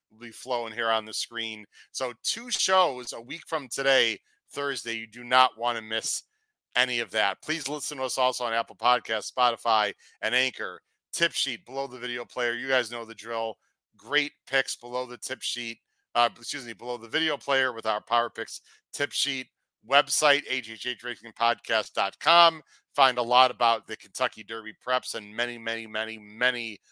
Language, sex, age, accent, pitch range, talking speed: English, male, 40-59, American, 115-145 Hz, 180 wpm